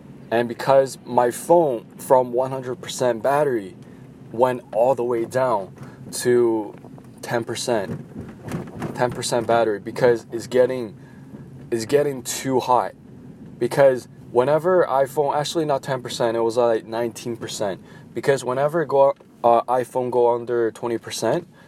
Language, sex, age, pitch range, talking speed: English, male, 20-39, 115-135 Hz, 135 wpm